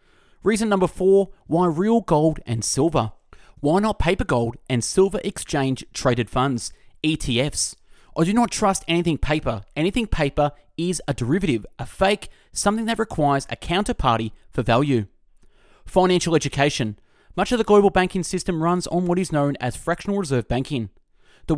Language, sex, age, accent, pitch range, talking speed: English, male, 30-49, Australian, 125-190 Hz, 155 wpm